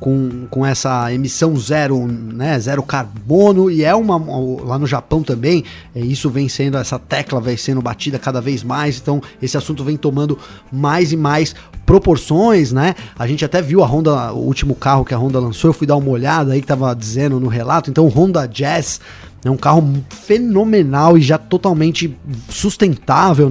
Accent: Brazilian